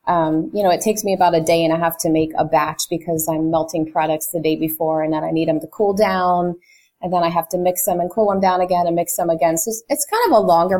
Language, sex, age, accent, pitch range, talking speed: English, female, 30-49, American, 160-205 Hz, 300 wpm